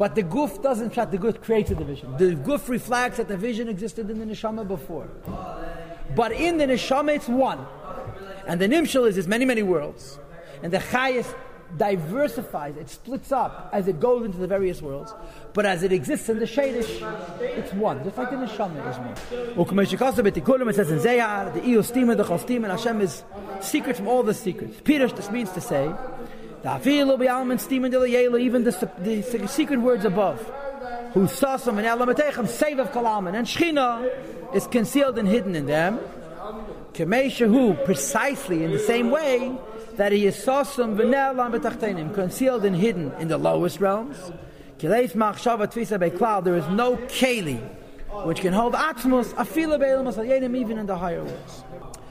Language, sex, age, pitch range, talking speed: English, male, 40-59, 185-250 Hz, 170 wpm